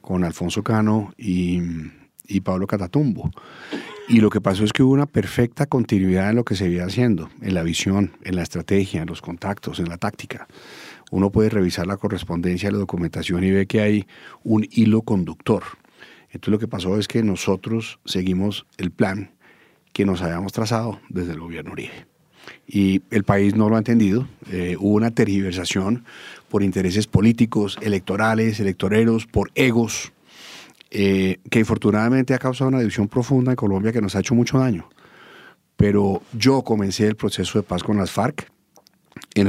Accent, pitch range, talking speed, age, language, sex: Colombian, 95-115 Hz, 170 wpm, 40-59, English, male